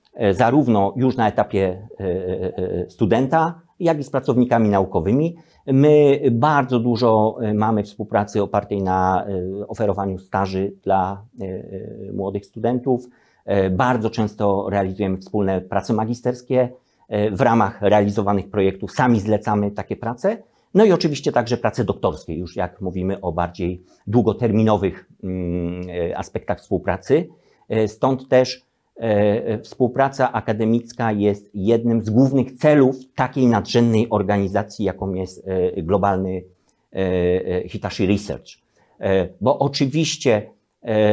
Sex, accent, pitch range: male, native, 95-120 Hz